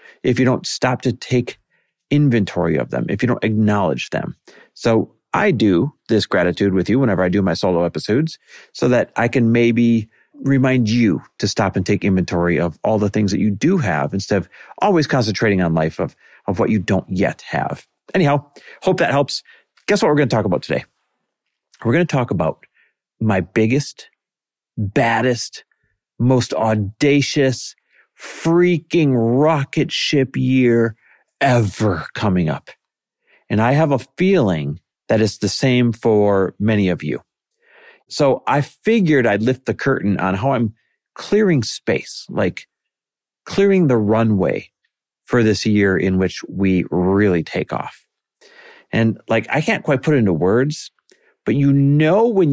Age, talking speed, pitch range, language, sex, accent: 40-59, 160 wpm, 105-145 Hz, English, male, American